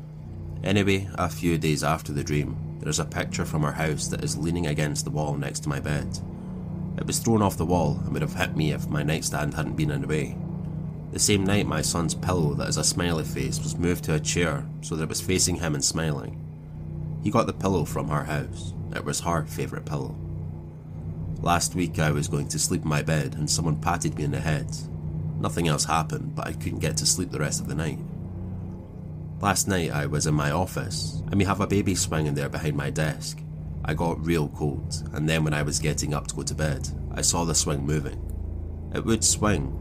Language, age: English, 30-49